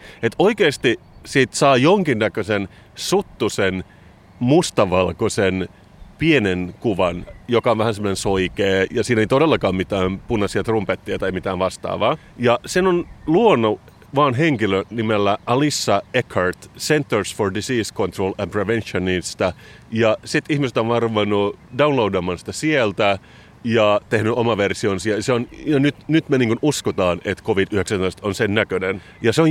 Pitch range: 95-130 Hz